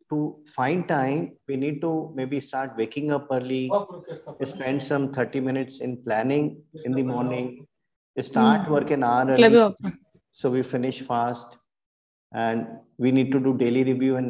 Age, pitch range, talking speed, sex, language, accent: 50-69, 120-150 Hz, 155 wpm, male, English, Indian